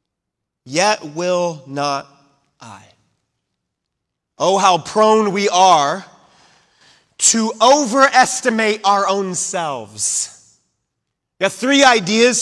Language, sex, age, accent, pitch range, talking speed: English, male, 30-49, American, 210-280 Hz, 85 wpm